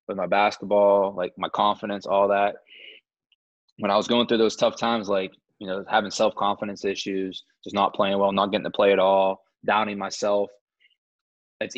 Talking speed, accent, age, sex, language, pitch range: 180 wpm, American, 20-39, male, English, 95-110 Hz